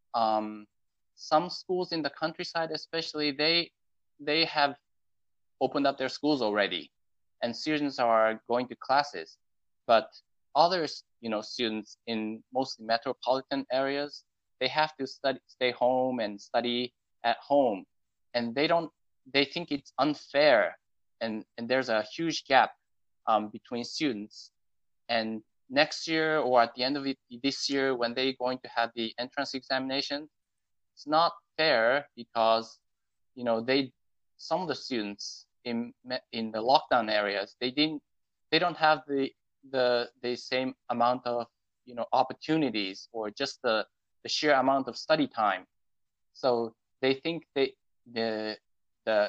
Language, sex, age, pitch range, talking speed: English, male, 20-39, 110-140 Hz, 145 wpm